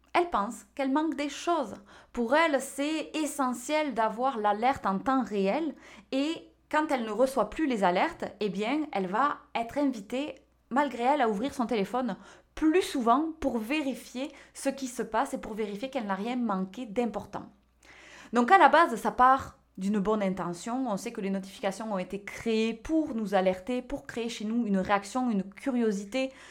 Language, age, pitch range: French, 20-39, 210-280 Hz